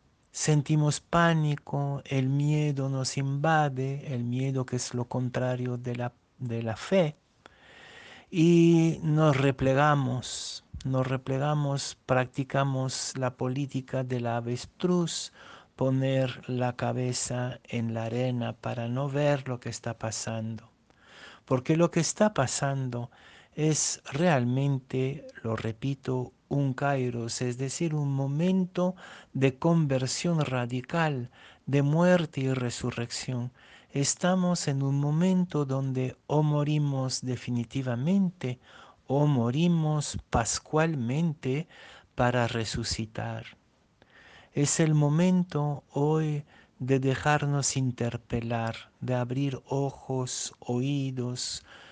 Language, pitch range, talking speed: Spanish, 125-150 Hz, 100 wpm